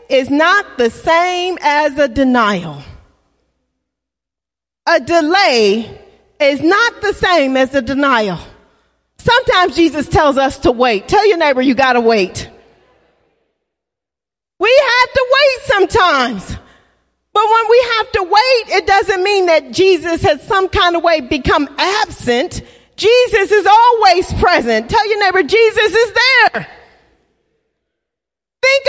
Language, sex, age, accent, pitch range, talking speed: English, female, 40-59, American, 325-440 Hz, 130 wpm